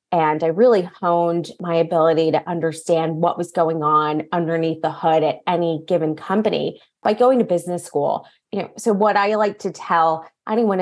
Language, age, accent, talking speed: English, 20-39, American, 185 wpm